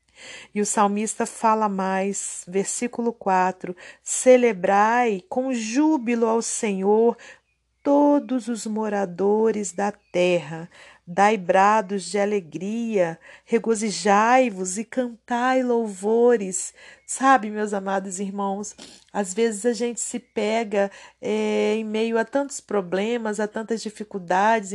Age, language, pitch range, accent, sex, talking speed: 40-59, Portuguese, 205-235 Hz, Brazilian, female, 105 wpm